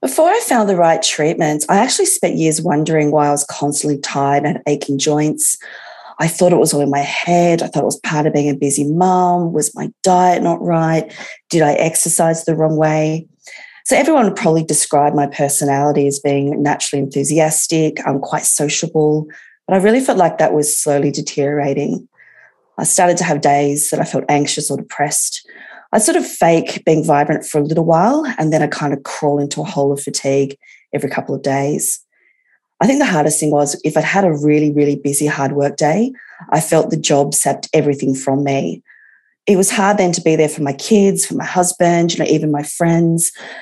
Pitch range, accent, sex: 145-175 Hz, Australian, female